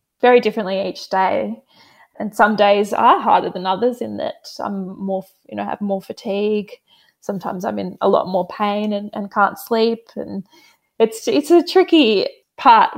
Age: 20-39